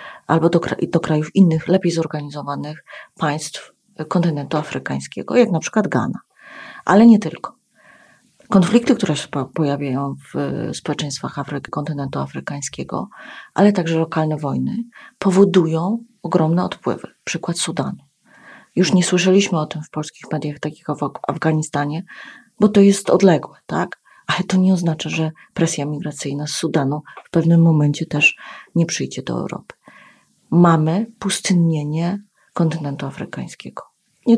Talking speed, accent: 130 wpm, native